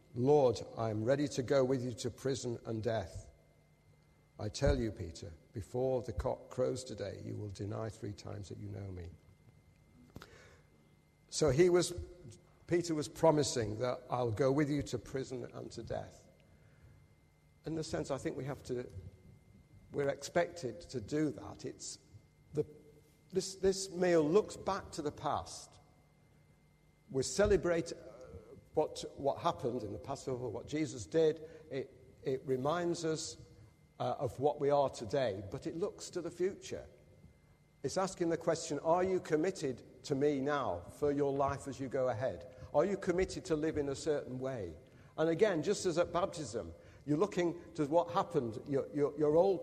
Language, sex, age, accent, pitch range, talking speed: English, male, 50-69, British, 120-160 Hz, 165 wpm